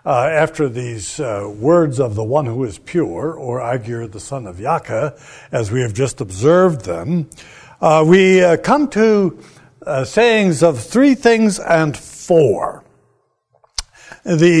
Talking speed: 150 wpm